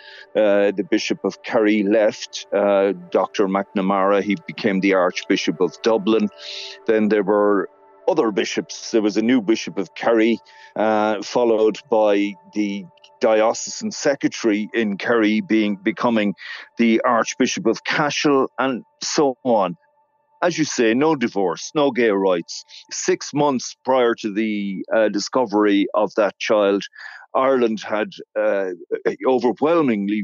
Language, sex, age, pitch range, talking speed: English, male, 40-59, 100-130 Hz, 130 wpm